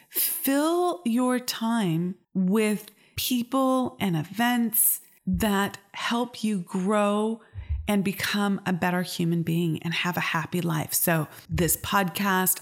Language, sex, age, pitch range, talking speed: English, female, 30-49, 165-205 Hz, 120 wpm